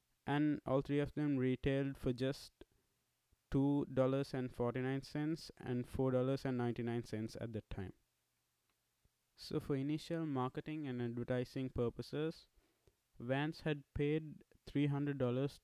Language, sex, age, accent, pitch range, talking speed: English, male, 20-39, Indian, 120-140 Hz, 95 wpm